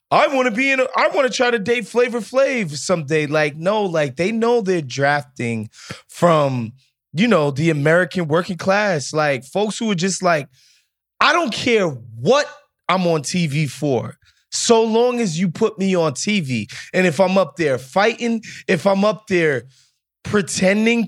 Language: English